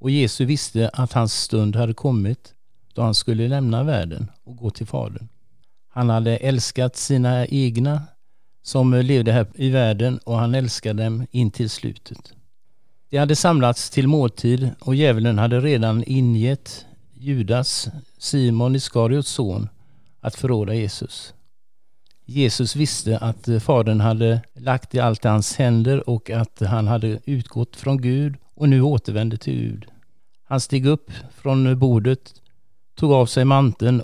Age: 50-69